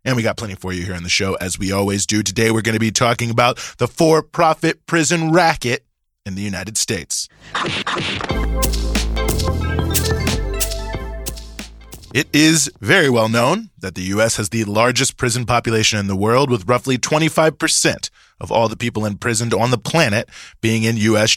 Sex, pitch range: male, 105-130 Hz